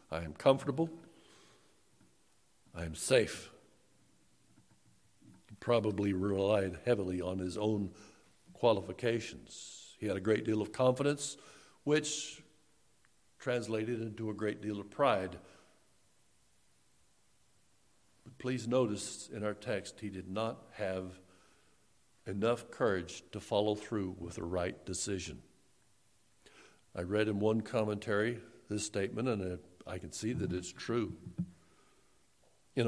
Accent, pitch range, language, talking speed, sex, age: American, 100-125 Hz, English, 115 wpm, male, 60-79